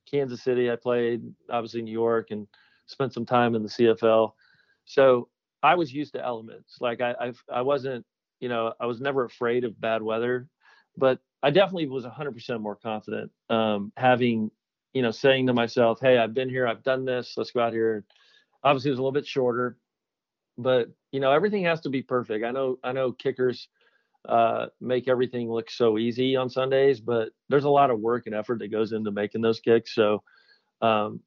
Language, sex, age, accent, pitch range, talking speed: English, male, 40-59, American, 115-135 Hz, 200 wpm